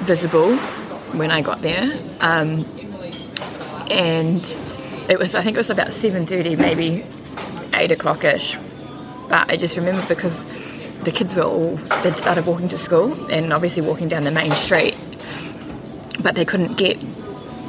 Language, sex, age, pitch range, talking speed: English, female, 20-39, 155-175 Hz, 145 wpm